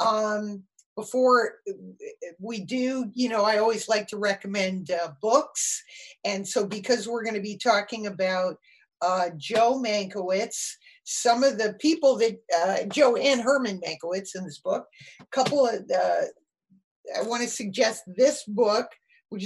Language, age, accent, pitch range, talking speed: English, 50-69, American, 195-245 Hz, 150 wpm